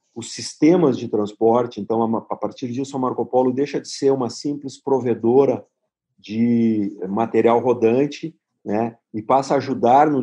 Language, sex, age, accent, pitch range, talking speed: Portuguese, male, 40-59, Brazilian, 110-140 Hz, 155 wpm